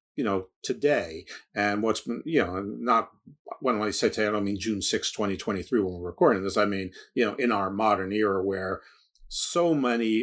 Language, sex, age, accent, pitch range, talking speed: English, male, 50-69, American, 110-140 Hz, 200 wpm